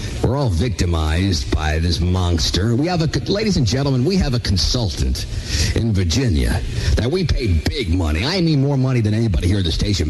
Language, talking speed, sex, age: English, 200 wpm, male, 50-69